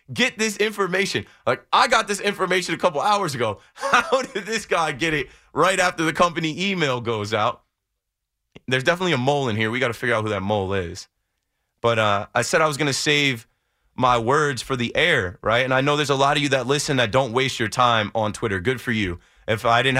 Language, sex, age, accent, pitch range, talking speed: English, male, 20-39, American, 110-140 Hz, 235 wpm